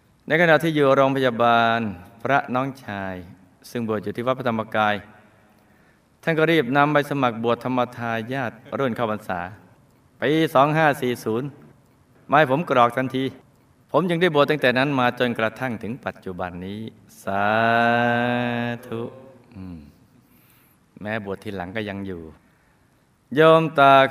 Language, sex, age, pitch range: Thai, male, 20-39, 105-135 Hz